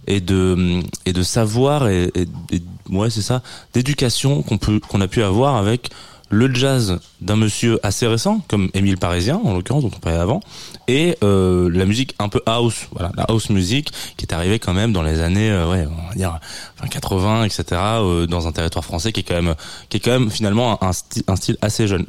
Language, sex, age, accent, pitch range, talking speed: French, male, 20-39, French, 90-130 Hz, 215 wpm